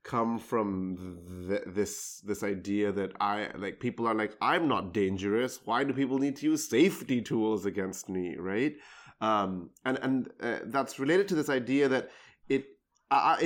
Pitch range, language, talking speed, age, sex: 105-135 Hz, English, 170 wpm, 20-39, male